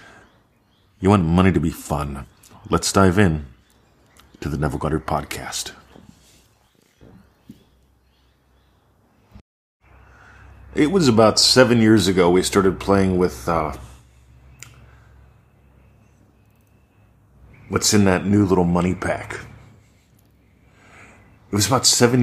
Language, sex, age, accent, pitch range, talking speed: English, male, 40-59, American, 85-105 Hz, 95 wpm